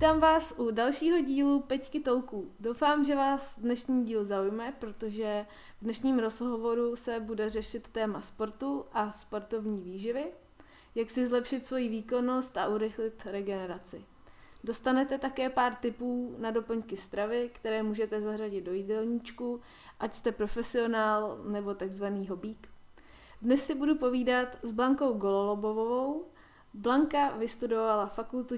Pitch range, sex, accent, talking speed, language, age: 215-245 Hz, female, native, 130 wpm, Czech, 20-39